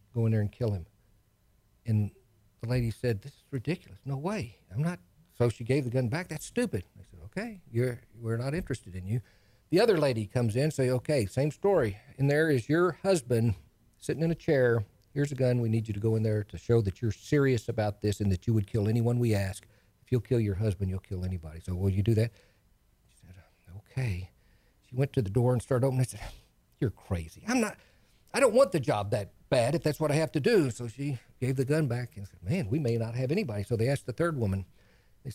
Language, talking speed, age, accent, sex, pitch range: English, 240 wpm, 50-69, American, male, 105-145 Hz